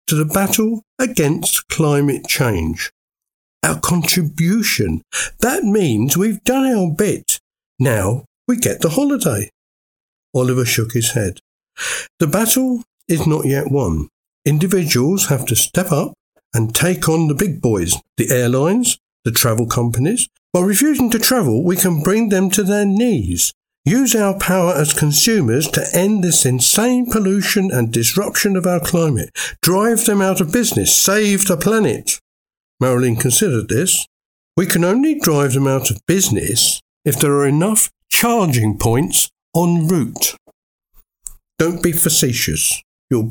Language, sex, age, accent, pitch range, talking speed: English, male, 60-79, British, 125-205 Hz, 140 wpm